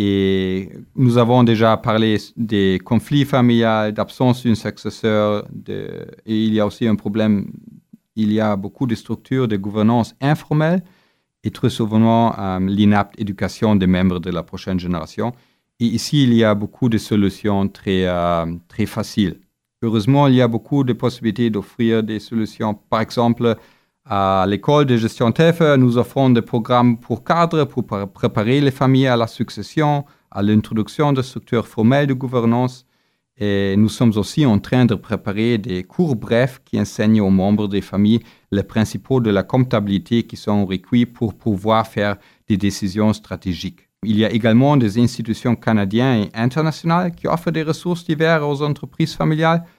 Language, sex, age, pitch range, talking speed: French, male, 40-59, 105-125 Hz, 165 wpm